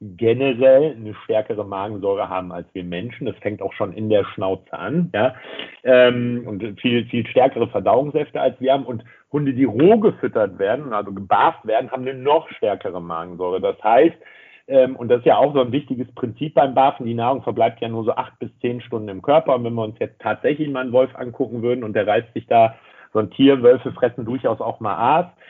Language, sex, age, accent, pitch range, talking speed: German, male, 50-69, German, 115-135 Hz, 215 wpm